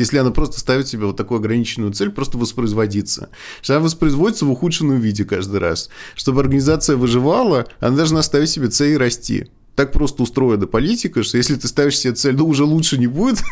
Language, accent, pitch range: Russian, native, 105-150 Hz